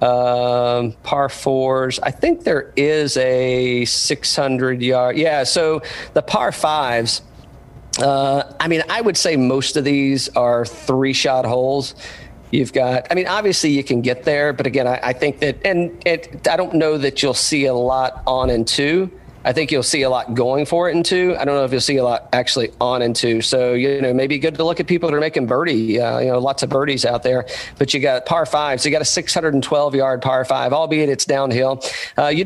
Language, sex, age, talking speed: English, male, 40-59, 215 wpm